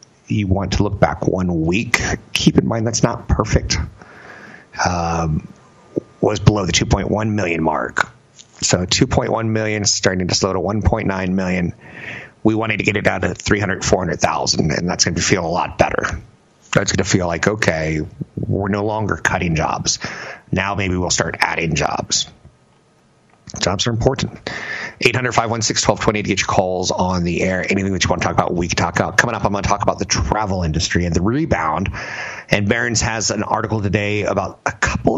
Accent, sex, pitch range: American, male, 90-110 Hz